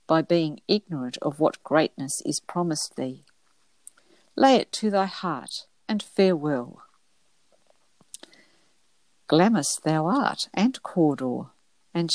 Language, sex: English, female